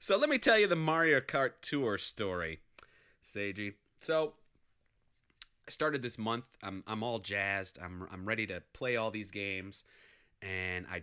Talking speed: 165 wpm